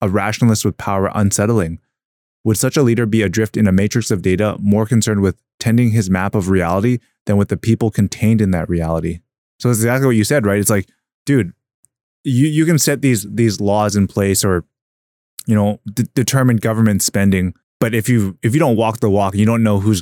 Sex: male